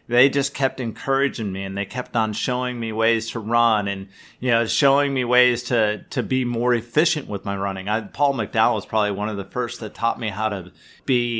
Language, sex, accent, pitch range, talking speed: English, male, American, 105-125 Hz, 220 wpm